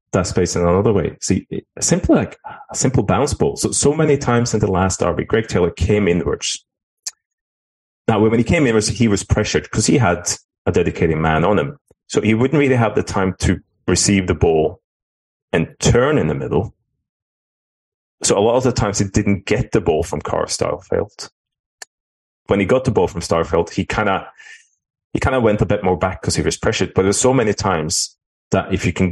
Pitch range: 90-115 Hz